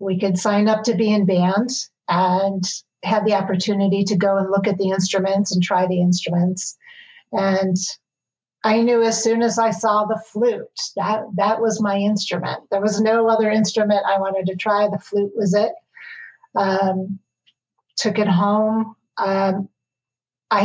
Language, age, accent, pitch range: English, 40-59, American, 190-220 Hz